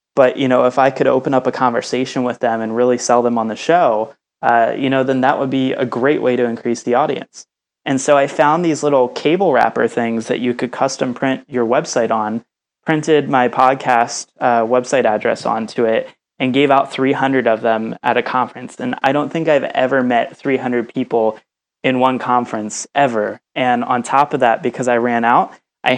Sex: male